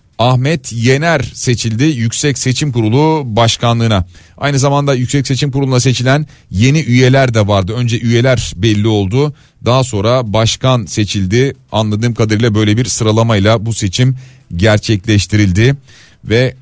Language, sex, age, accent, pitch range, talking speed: Turkish, male, 40-59, native, 105-135 Hz, 125 wpm